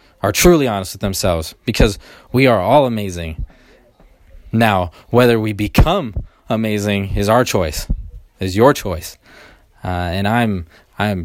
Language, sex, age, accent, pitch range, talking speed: English, male, 20-39, American, 90-115 Hz, 130 wpm